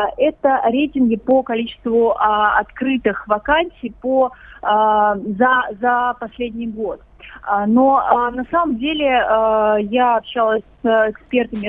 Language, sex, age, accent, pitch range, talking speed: Russian, female, 30-49, native, 220-270 Hz, 90 wpm